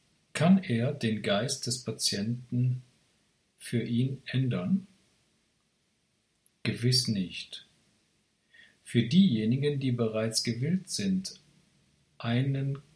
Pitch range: 115-155 Hz